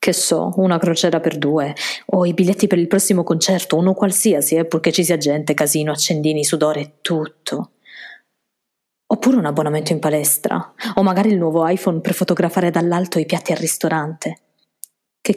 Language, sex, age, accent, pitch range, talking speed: Italian, female, 20-39, native, 155-190 Hz, 165 wpm